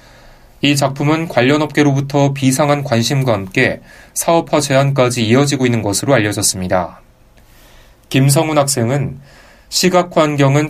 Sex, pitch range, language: male, 120-150 Hz, Korean